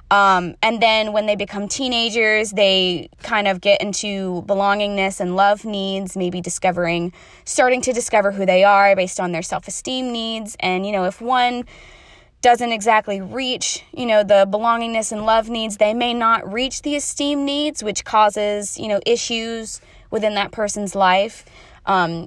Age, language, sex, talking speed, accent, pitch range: 20-39, English, female, 165 wpm, American, 190-245 Hz